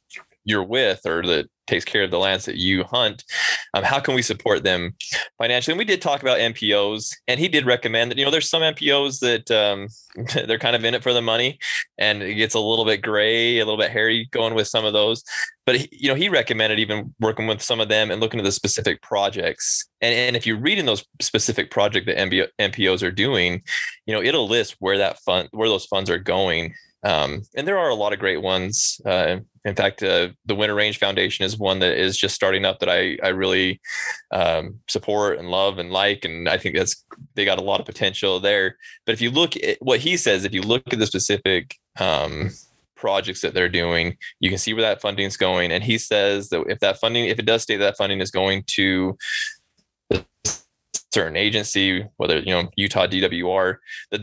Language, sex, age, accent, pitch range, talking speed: English, male, 20-39, American, 95-115 Hz, 220 wpm